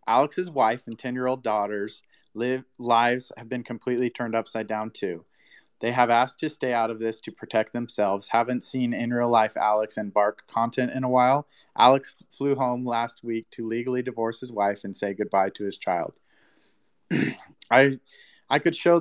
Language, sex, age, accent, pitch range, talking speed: English, male, 30-49, American, 110-130 Hz, 180 wpm